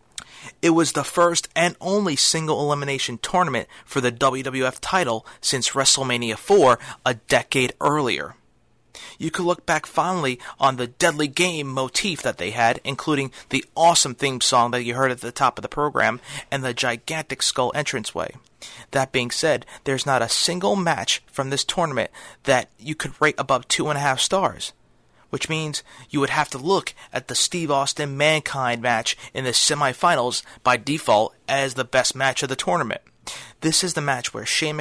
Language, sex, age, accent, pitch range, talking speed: English, male, 30-49, American, 130-155 Hz, 170 wpm